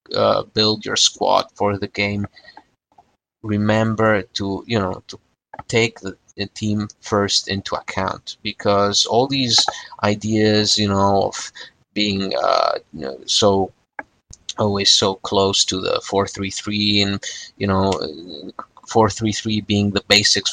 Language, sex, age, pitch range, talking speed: English, male, 30-49, 100-110 Hz, 135 wpm